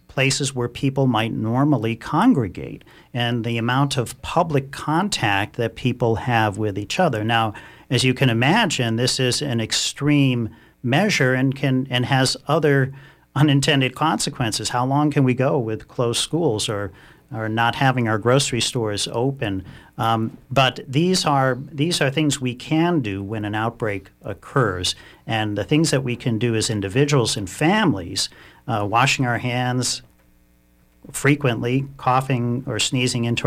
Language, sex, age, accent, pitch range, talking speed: English, male, 50-69, American, 115-140 Hz, 150 wpm